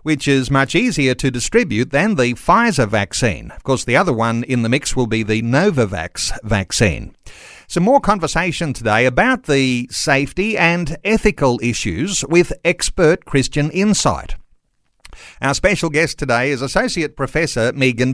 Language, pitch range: English, 120-165 Hz